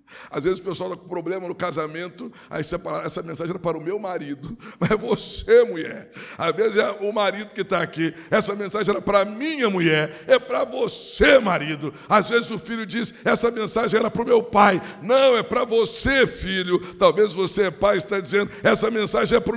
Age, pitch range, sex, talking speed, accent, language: 60-79, 155-210 Hz, male, 205 wpm, Brazilian, Portuguese